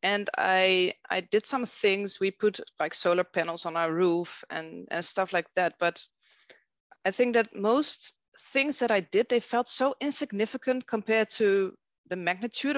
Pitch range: 190-250 Hz